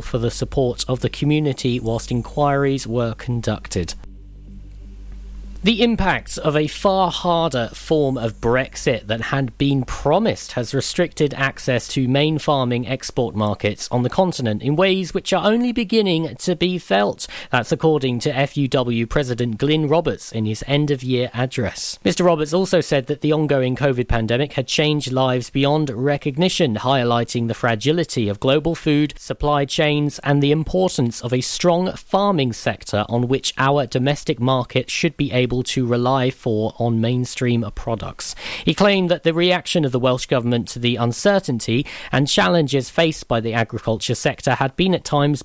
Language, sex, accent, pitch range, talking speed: English, male, British, 120-155 Hz, 160 wpm